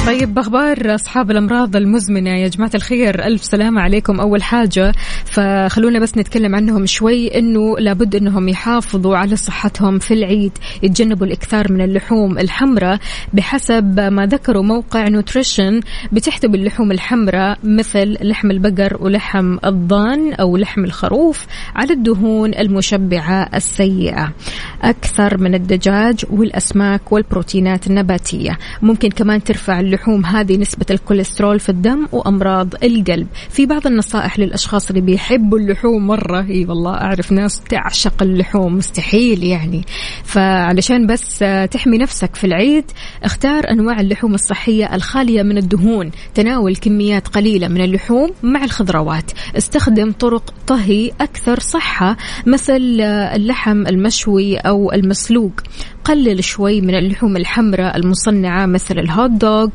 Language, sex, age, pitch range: Arabic, female, 20-39, 195-225 Hz